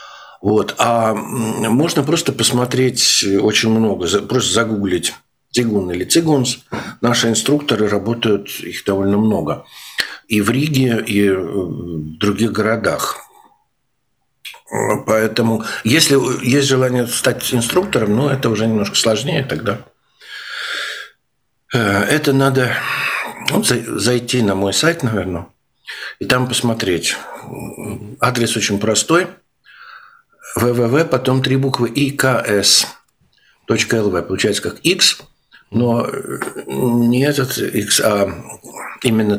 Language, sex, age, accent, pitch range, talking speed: Russian, male, 60-79, native, 105-135 Hz, 100 wpm